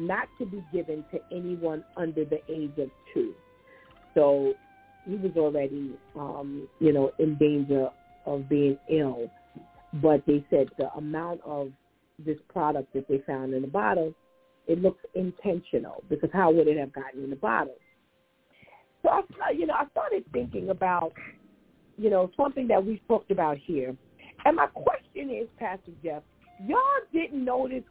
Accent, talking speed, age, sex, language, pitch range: American, 155 wpm, 50-69, female, English, 150-220 Hz